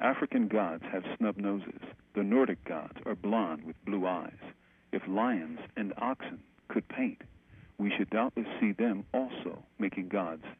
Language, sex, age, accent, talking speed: English, male, 50-69, American, 155 wpm